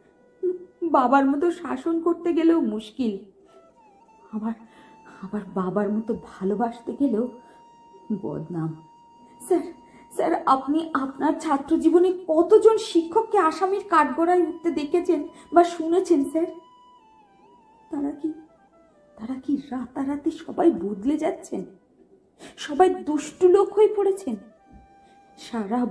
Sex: female